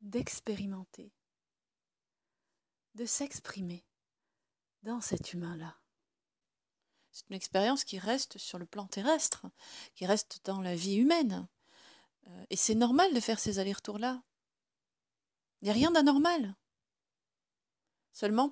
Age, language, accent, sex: 40-59, French, French, female